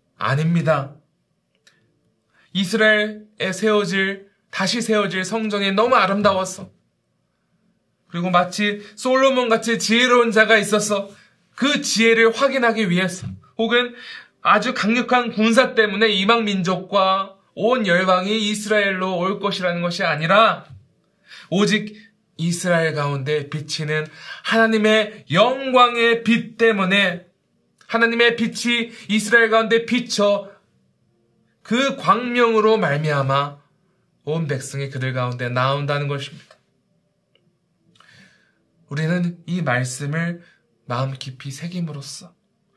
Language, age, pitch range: Korean, 20-39, 150-220 Hz